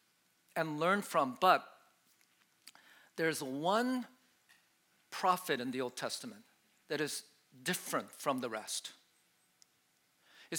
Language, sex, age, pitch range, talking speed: English, male, 50-69, 155-195 Hz, 100 wpm